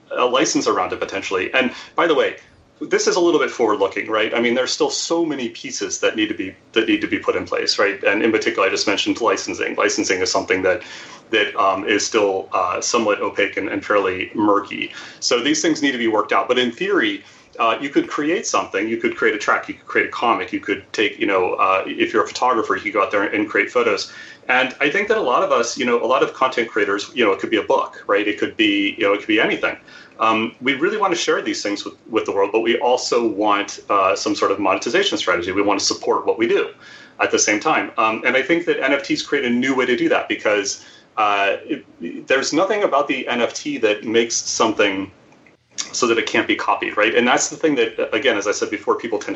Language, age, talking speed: English, 30-49, 250 wpm